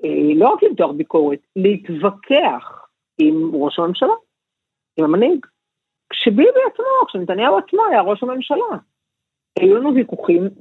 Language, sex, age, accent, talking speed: Hebrew, female, 50-69, native, 115 wpm